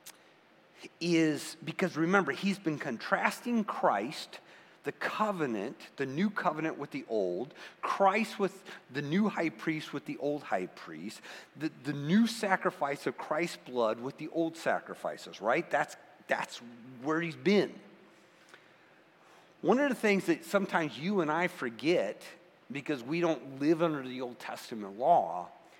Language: English